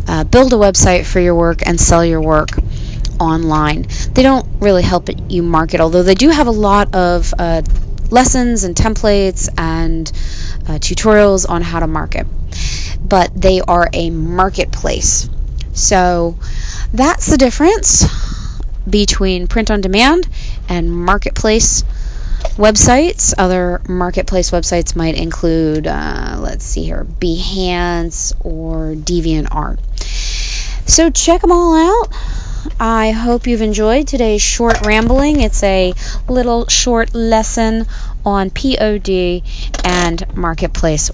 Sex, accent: female, American